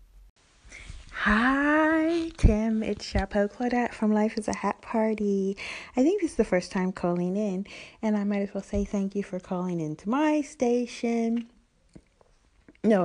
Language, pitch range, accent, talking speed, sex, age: English, 175-225 Hz, American, 160 wpm, female, 30-49